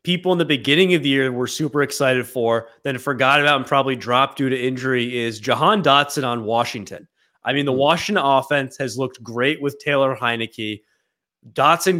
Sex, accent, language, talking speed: male, American, English, 190 wpm